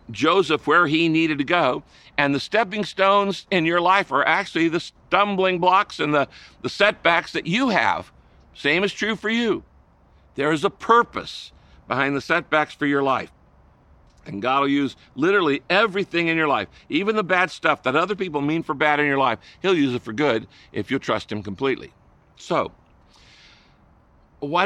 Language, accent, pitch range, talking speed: English, American, 115-165 Hz, 180 wpm